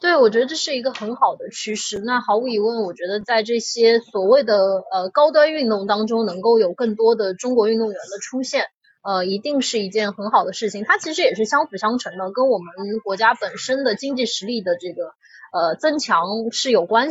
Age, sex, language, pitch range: 20-39, female, Chinese, 205-260 Hz